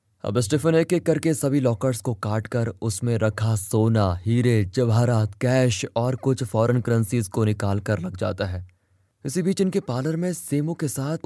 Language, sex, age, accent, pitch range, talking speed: Hindi, male, 20-39, native, 110-145 Hz, 165 wpm